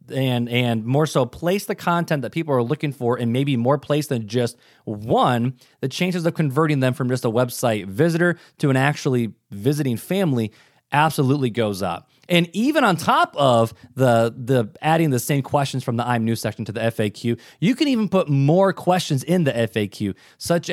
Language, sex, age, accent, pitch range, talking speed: English, male, 20-39, American, 120-170 Hz, 190 wpm